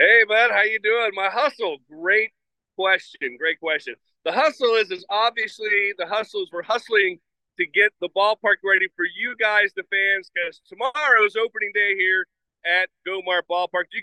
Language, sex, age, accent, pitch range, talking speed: English, male, 40-59, American, 185-220 Hz, 165 wpm